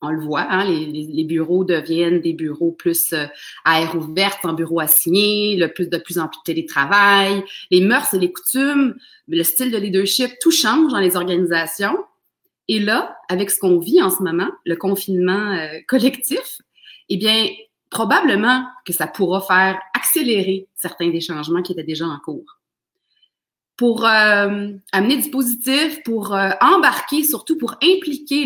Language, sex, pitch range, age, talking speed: French, female, 175-260 Hz, 30-49, 170 wpm